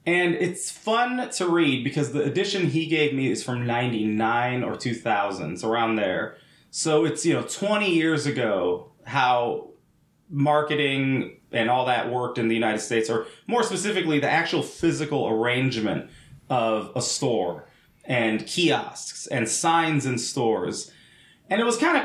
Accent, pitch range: American, 120-175 Hz